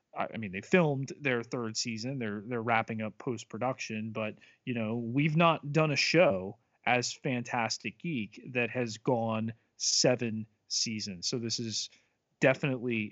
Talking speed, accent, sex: 145 wpm, American, male